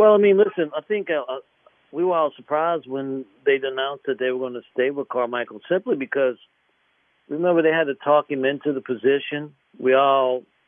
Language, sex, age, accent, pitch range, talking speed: English, male, 50-69, American, 130-160 Hz, 195 wpm